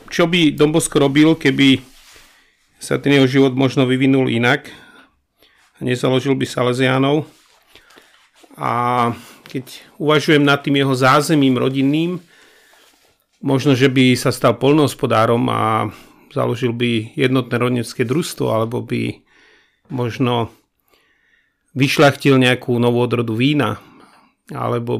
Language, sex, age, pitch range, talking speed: Slovak, male, 40-59, 120-145 Hz, 105 wpm